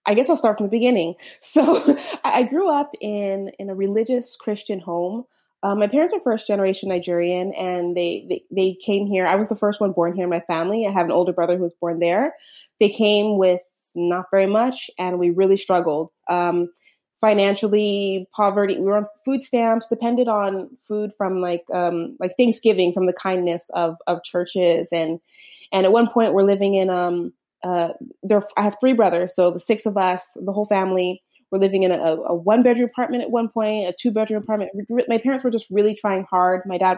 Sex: female